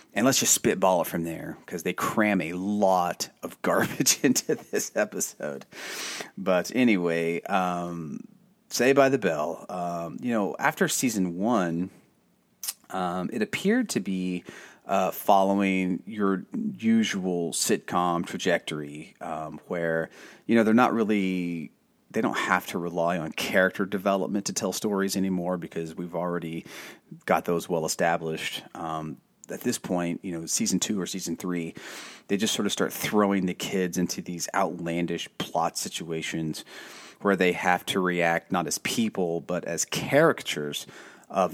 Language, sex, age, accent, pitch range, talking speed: English, male, 30-49, American, 85-95 Hz, 150 wpm